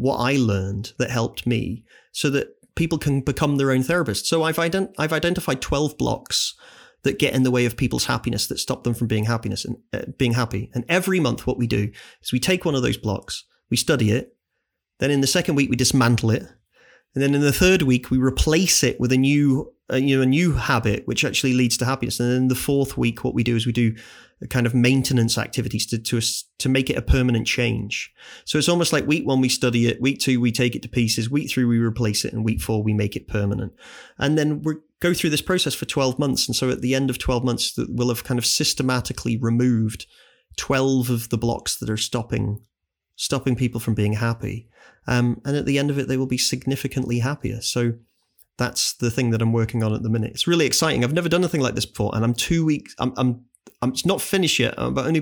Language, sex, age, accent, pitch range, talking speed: English, male, 30-49, British, 115-135 Hz, 240 wpm